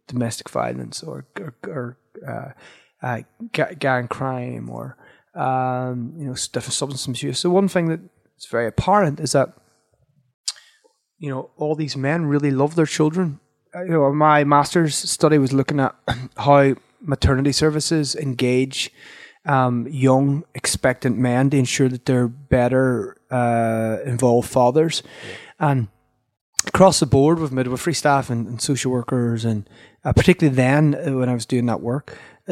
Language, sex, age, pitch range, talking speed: English, male, 20-39, 125-150 Hz, 150 wpm